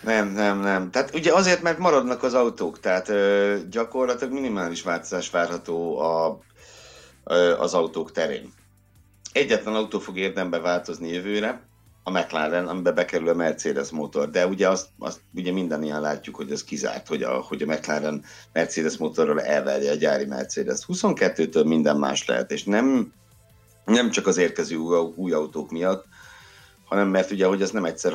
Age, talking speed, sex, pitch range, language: 60-79, 165 wpm, male, 80-105 Hz, Hungarian